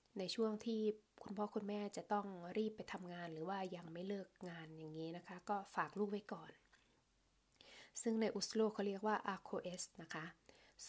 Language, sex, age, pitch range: Thai, female, 20-39, 180-220 Hz